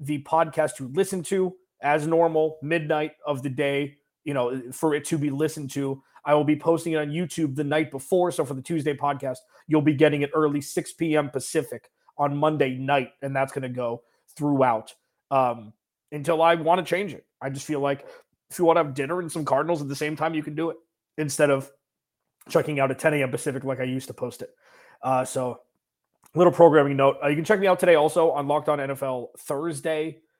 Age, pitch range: 30-49, 135-165 Hz